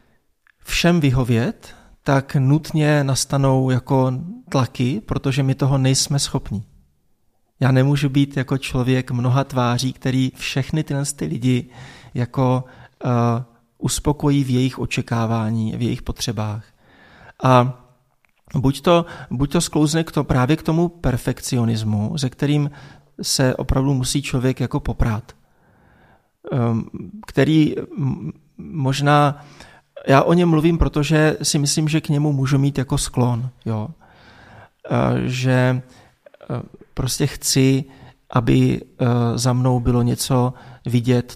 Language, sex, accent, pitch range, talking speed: Czech, male, native, 120-140 Hz, 115 wpm